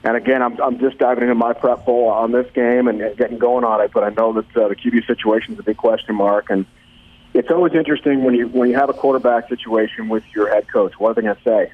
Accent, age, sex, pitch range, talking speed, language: American, 40-59, male, 110-130 Hz, 270 wpm, English